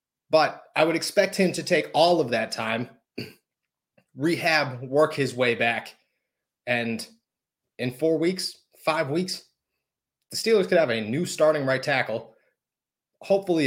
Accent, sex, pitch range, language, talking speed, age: American, male, 130-185 Hz, English, 140 wpm, 30-49